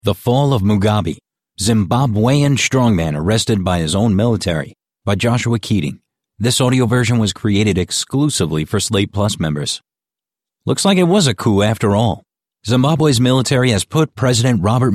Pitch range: 95-125 Hz